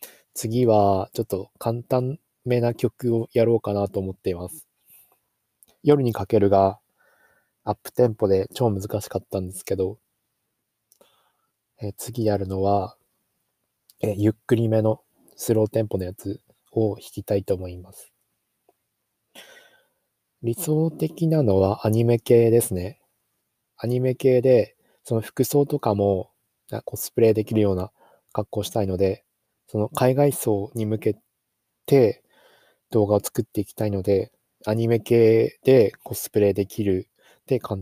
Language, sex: Japanese, male